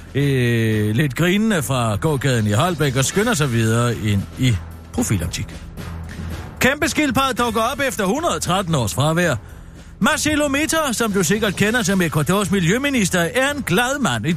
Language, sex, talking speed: Danish, male, 145 wpm